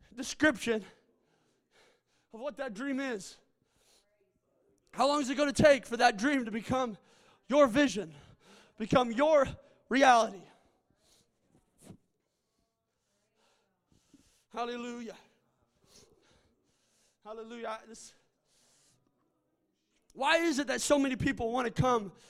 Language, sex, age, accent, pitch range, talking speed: English, male, 20-39, American, 230-285 Hz, 95 wpm